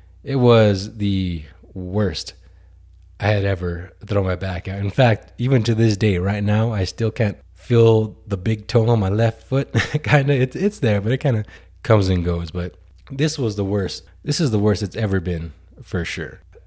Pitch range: 85-110 Hz